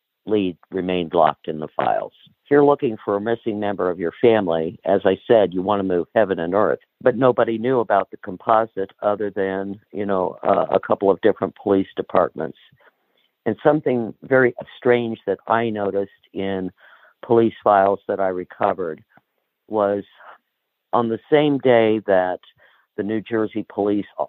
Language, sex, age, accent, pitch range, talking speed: English, male, 50-69, American, 95-115 Hz, 165 wpm